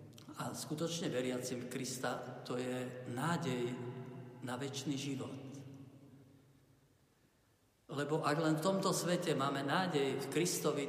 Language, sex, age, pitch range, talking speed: Slovak, male, 50-69, 135-155 Hz, 110 wpm